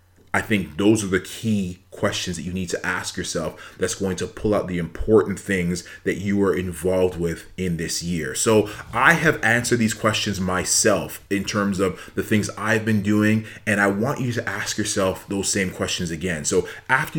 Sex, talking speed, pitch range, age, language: male, 200 wpm, 95-110 Hz, 30-49, English